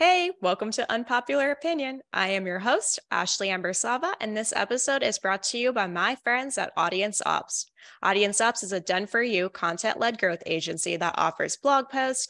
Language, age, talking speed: English, 10-29, 175 wpm